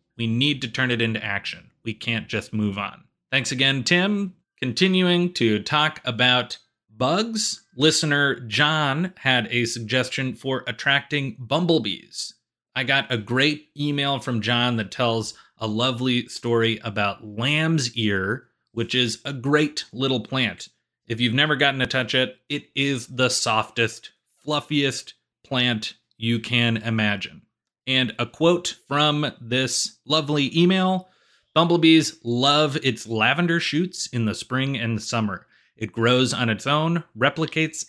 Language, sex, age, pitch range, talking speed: English, male, 30-49, 115-150 Hz, 140 wpm